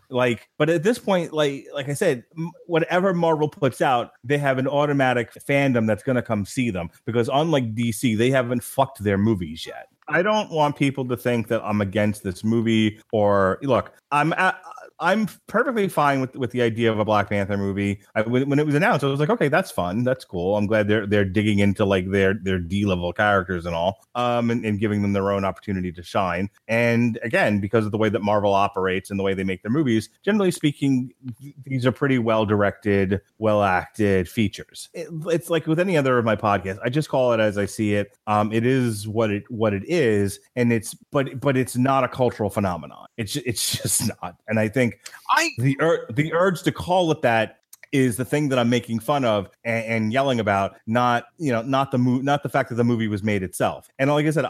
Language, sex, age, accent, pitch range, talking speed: English, male, 30-49, American, 105-140 Hz, 225 wpm